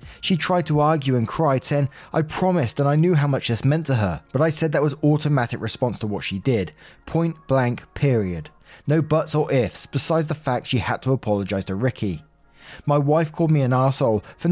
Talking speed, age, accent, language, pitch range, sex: 215 wpm, 20-39, British, English, 110-150 Hz, male